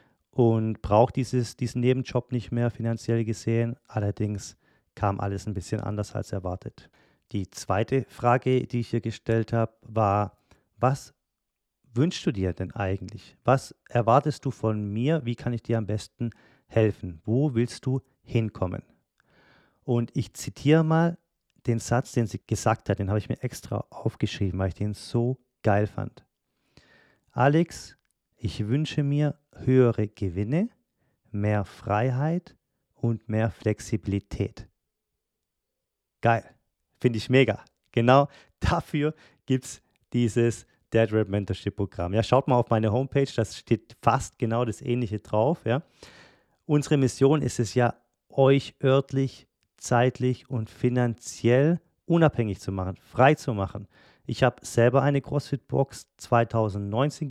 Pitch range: 105-130 Hz